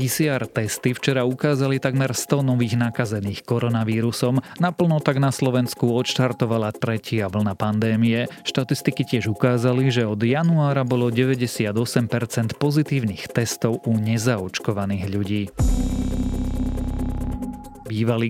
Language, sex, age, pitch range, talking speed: Slovak, male, 30-49, 110-130 Hz, 100 wpm